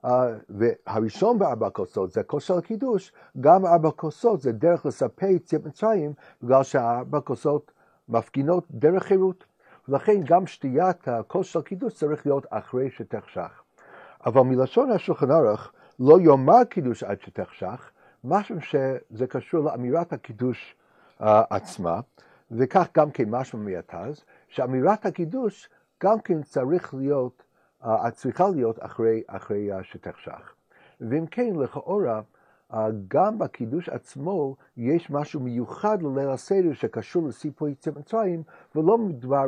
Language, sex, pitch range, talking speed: Hebrew, male, 115-170 Hz, 130 wpm